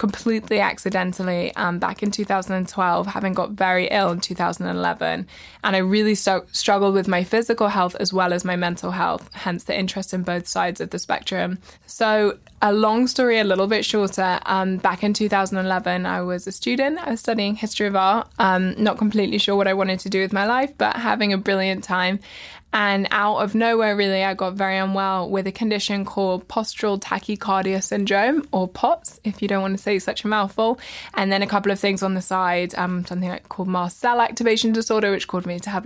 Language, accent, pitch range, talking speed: English, British, 185-210 Hz, 205 wpm